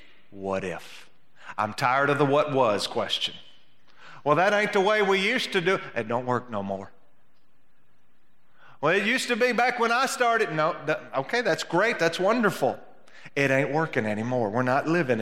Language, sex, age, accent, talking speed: English, male, 40-59, American, 175 wpm